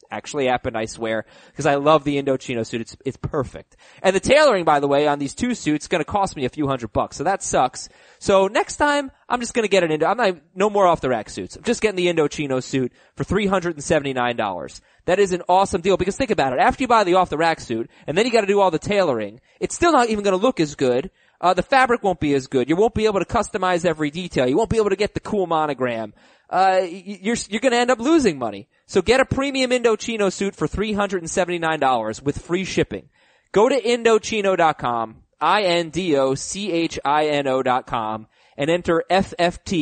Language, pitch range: English, 145-210 Hz